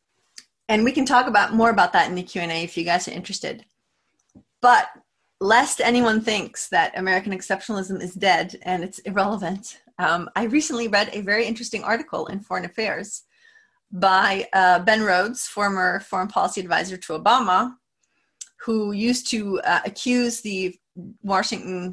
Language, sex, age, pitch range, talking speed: English, female, 30-49, 185-235 Hz, 155 wpm